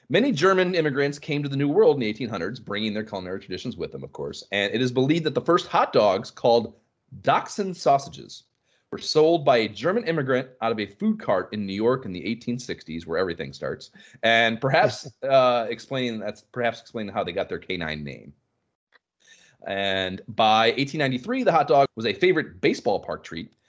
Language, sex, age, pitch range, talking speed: English, male, 30-49, 95-135 Hz, 185 wpm